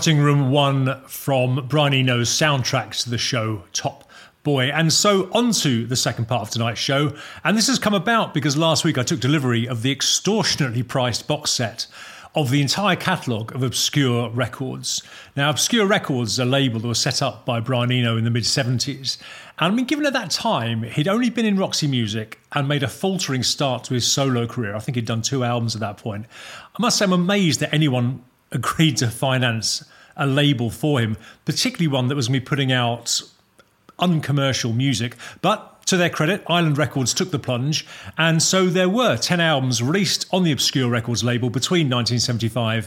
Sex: male